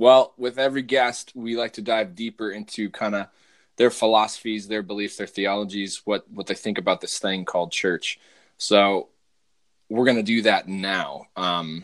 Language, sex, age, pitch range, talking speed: English, male, 20-39, 100-130 Hz, 175 wpm